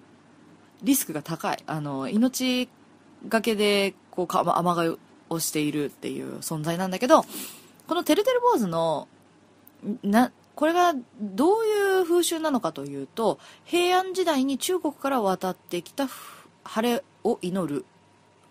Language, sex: Japanese, female